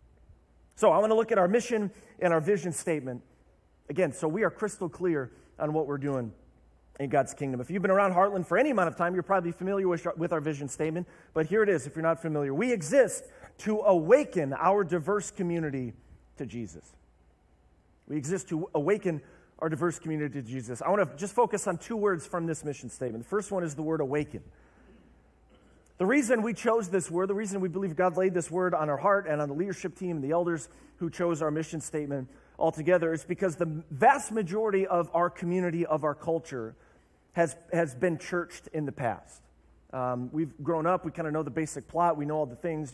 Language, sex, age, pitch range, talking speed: English, male, 40-59, 140-185 Hz, 210 wpm